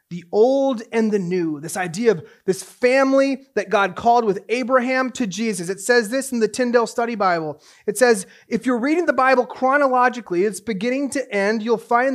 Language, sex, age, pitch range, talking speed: English, male, 30-49, 165-230 Hz, 195 wpm